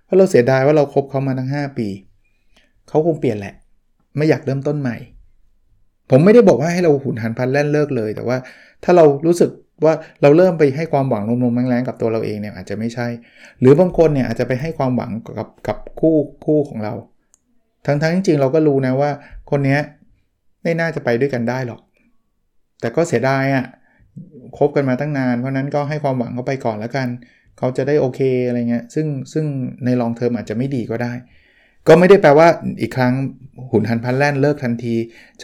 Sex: male